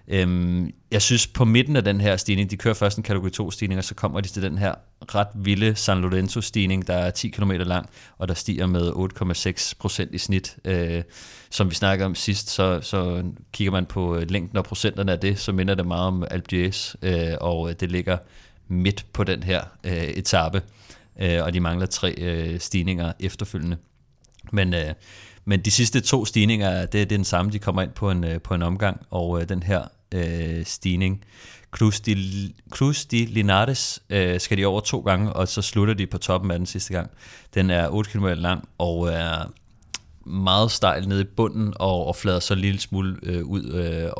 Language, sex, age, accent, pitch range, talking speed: Danish, male, 30-49, native, 90-105 Hz, 195 wpm